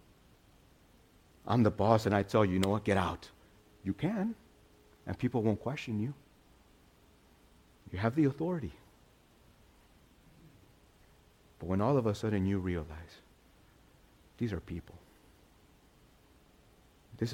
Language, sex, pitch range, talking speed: English, male, 90-125 Hz, 120 wpm